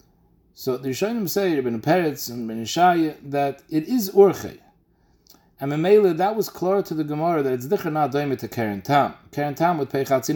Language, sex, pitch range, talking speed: English, male, 130-175 Hz, 205 wpm